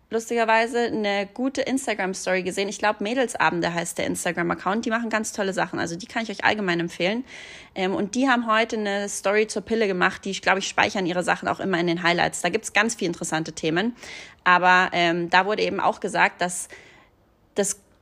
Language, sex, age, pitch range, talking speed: German, female, 30-49, 170-215 Hz, 200 wpm